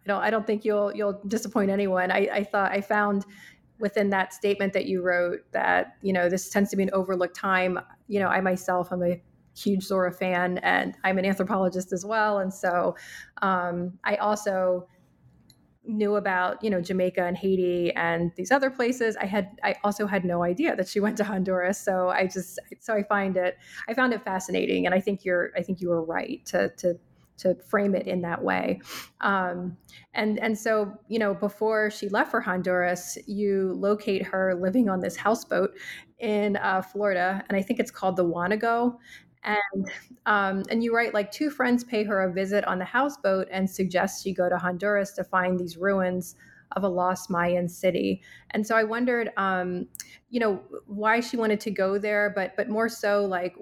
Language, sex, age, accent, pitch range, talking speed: English, female, 30-49, American, 185-210 Hz, 200 wpm